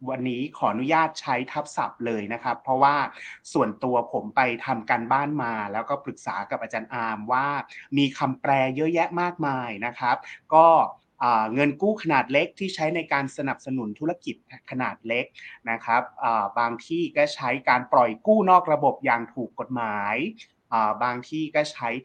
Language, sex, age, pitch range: Thai, male, 30-49, 120-150 Hz